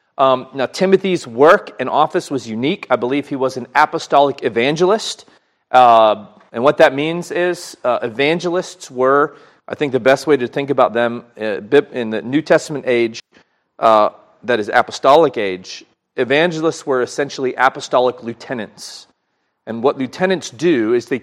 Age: 40-59